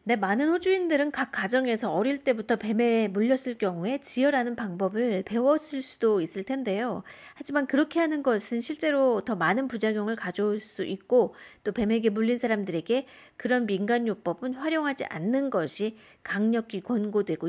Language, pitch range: Korean, 200-250 Hz